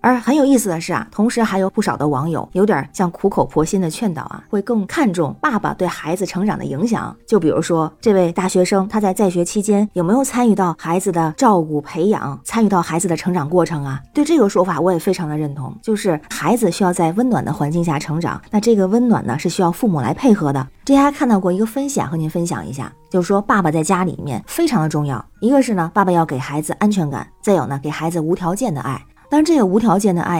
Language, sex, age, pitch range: Chinese, female, 20-39, 165-215 Hz